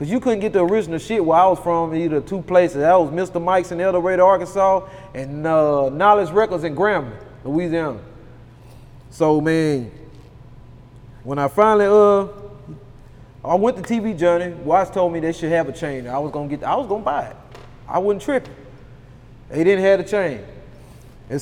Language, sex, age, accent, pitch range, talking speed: English, male, 20-39, American, 135-215 Hz, 195 wpm